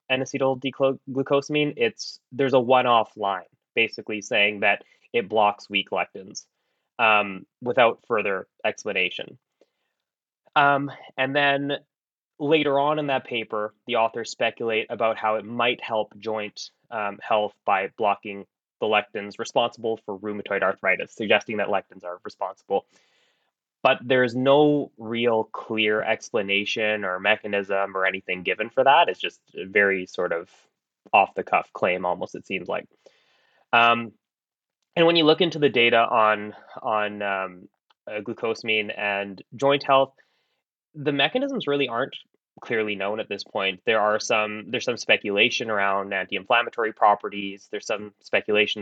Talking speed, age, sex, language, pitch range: 135 wpm, 20-39, male, English, 100-130 Hz